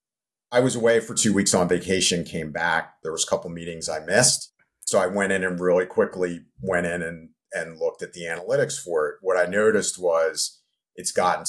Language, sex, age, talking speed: English, male, 50-69, 215 wpm